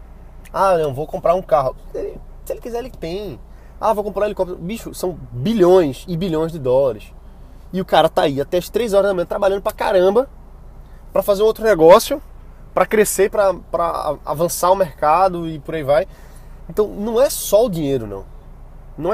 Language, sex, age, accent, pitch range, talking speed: Portuguese, male, 20-39, Brazilian, 145-210 Hz, 190 wpm